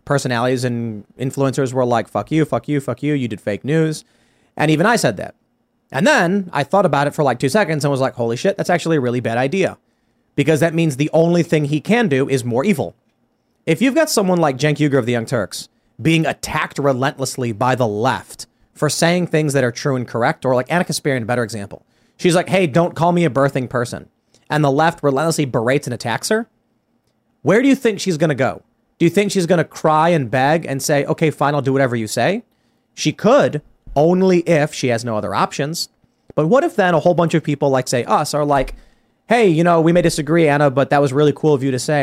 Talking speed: 240 wpm